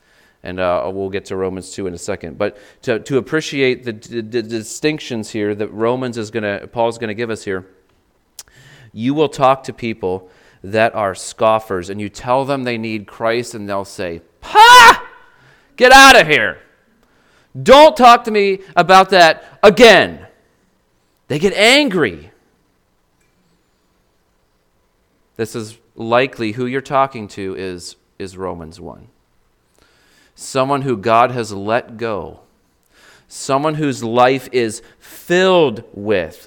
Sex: male